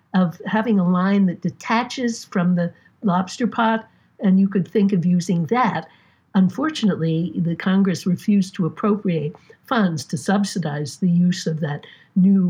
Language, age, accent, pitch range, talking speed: English, 60-79, American, 170-215 Hz, 150 wpm